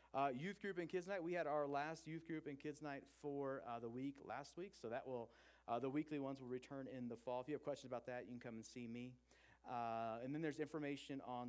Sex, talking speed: male, 265 wpm